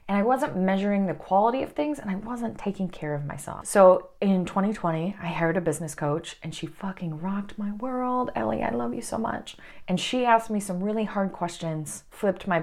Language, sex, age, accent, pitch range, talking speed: English, female, 30-49, American, 180-255 Hz, 215 wpm